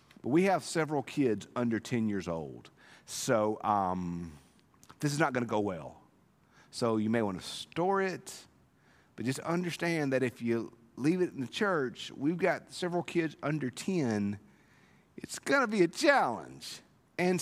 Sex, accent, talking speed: male, American, 165 wpm